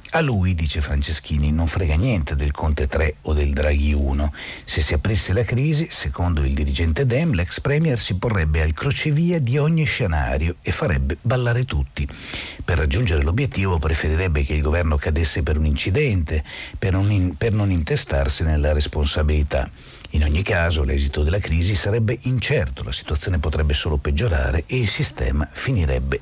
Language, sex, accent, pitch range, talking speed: Italian, male, native, 75-110 Hz, 160 wpm